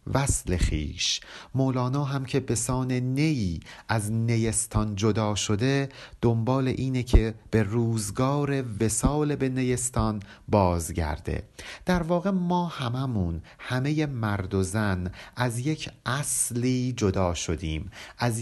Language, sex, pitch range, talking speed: Persian, male, 100-130 Hz, 115 wpm